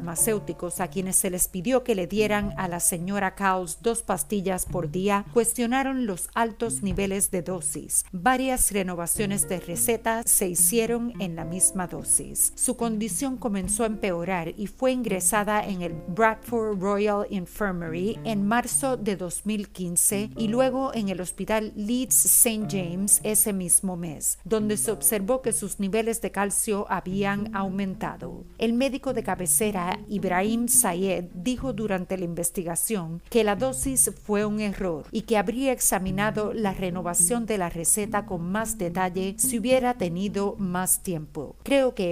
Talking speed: 150 wpm